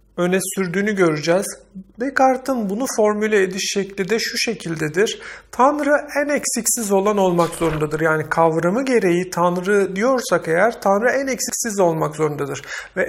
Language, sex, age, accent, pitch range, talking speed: Turkish, male, 50-69, native, 175-220 Hz, 135 wpm